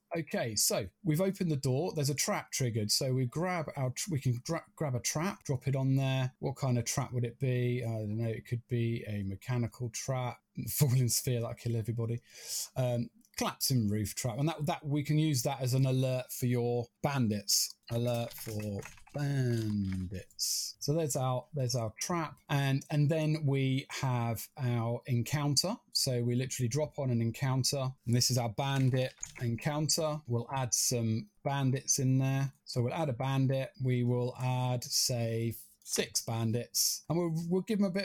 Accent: British